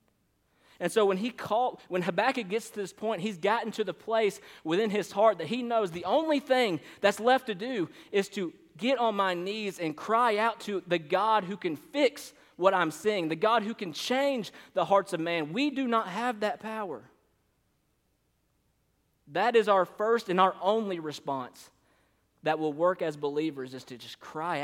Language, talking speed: English, 190 wpm